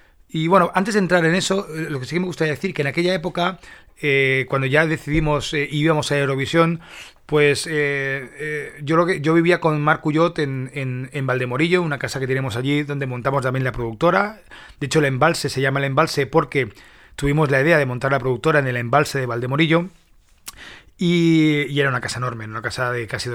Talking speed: 210 wpm